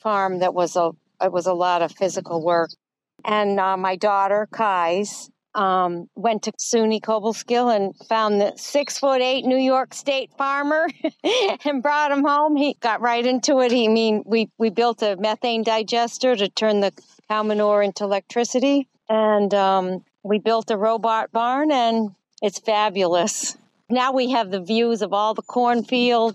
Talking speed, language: 170 wpm, English